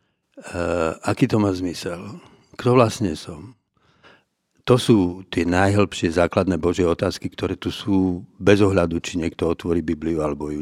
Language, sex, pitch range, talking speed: Slovak, male, 95-110 Hz, 145 wpm